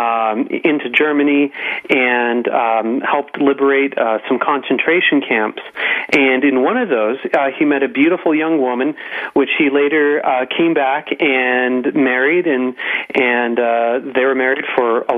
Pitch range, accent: 125-150 Hz, American